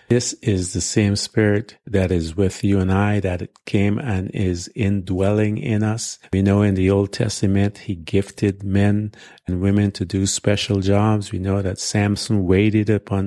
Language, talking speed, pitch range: English, 170 wpm, 90-105 Hz